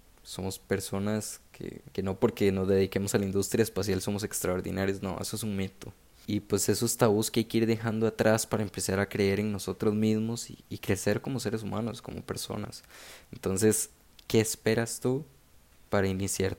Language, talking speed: Spanish, 185 wpm